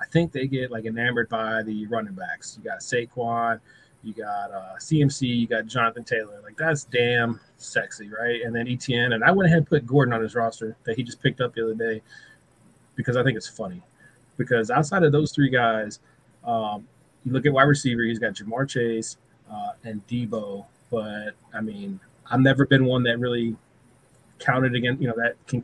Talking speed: 200 wpm